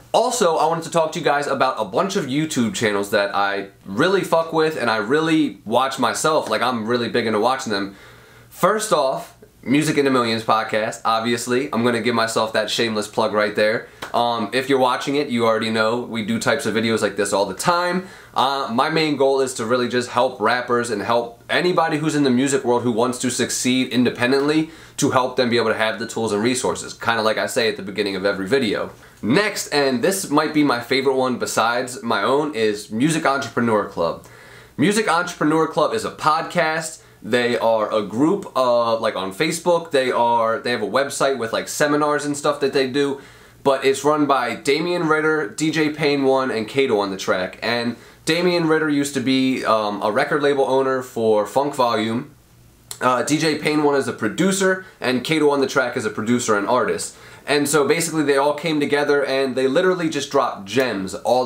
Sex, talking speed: male, 210 wpm